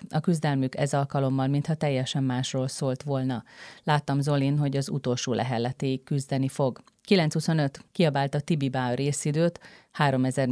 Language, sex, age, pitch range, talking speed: Hungarian, female, 30-49, 130-145 Hz, 135 wpm